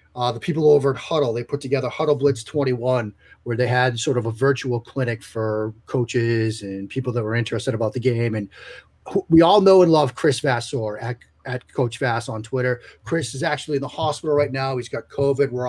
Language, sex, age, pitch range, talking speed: English, male, 30-49, 120-150 Hz, 220 wpm